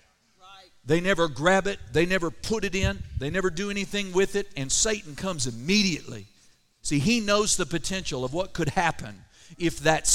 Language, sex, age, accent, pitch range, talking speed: English, male, 50-69, American, 130-190 Hz, 175 wpm